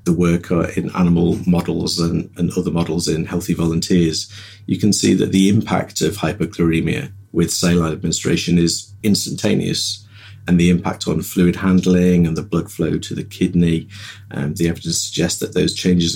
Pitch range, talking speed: 85-100 Hz, 165 wpm